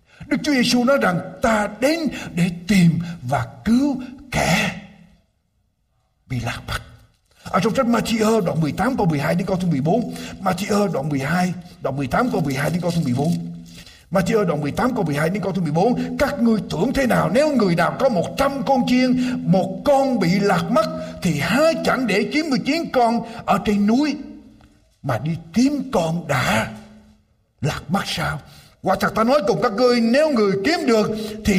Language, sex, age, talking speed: Vietnamese, male, 60-79, 165 wpm